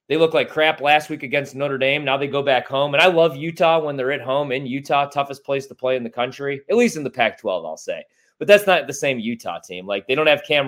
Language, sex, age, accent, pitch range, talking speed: English, male, 30-49, American, 125-155 Hz, 280 wpm